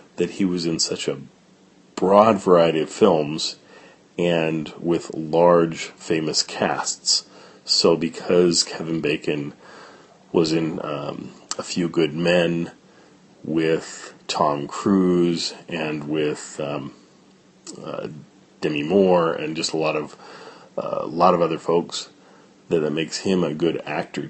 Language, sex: English, male